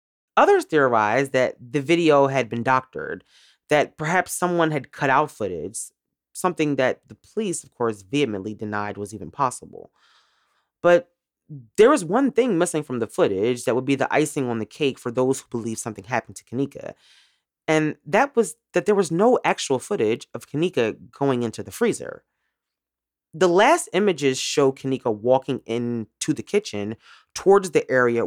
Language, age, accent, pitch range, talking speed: English, 30-49, American, 115-165 Hz, 165 wpm